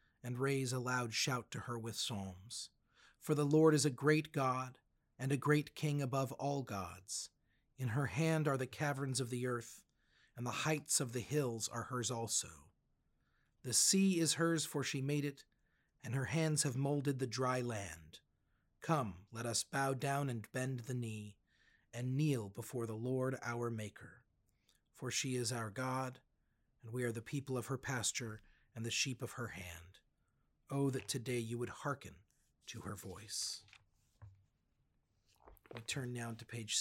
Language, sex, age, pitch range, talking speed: English, male, 40-59, 110-135 Hz, 175 wpm